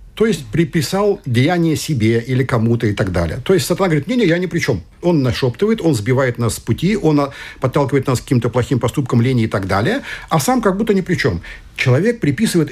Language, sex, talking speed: Russian, male, 215 wpm